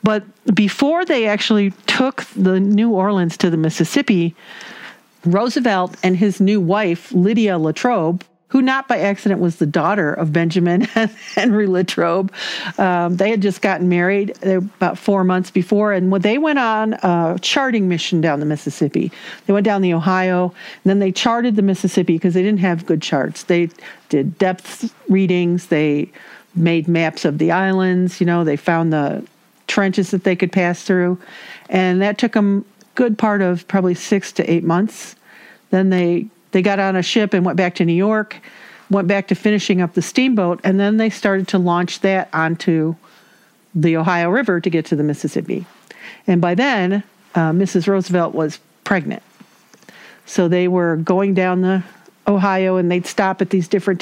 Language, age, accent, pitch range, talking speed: English, 50-69, American, 175-205 Hz, 175 wpm